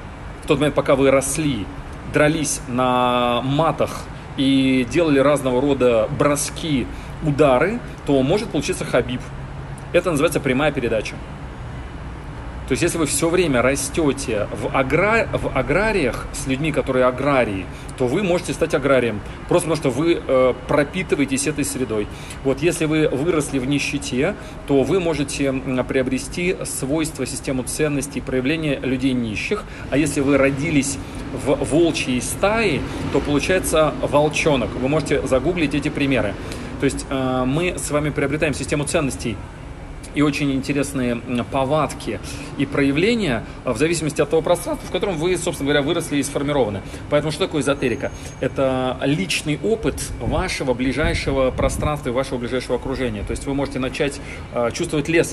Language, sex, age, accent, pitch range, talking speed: Russian, male, 40-59, native, 125-150 Hz, 140 wpm